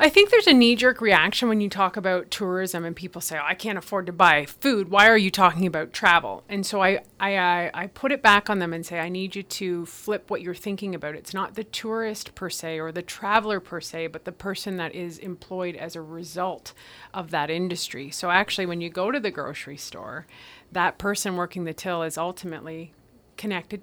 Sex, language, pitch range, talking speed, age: female, English, 160-190 Hz, 220 wpm, 30-49